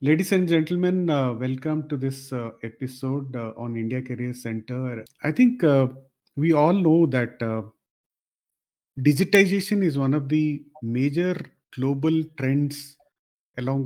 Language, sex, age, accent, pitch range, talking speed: English, male, 40-59, Indian, 120-155 Hz, 135 wpm